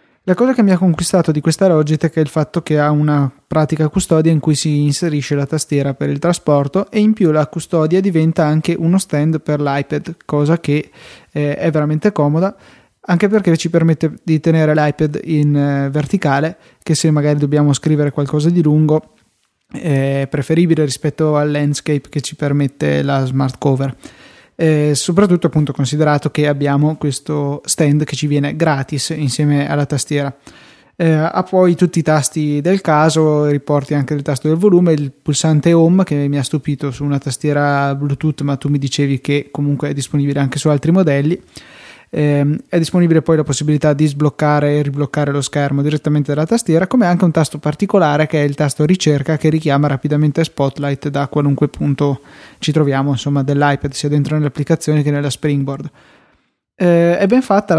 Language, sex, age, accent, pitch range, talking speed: Italian, male, 20-39, native, 145-160 Hz, 180 wpm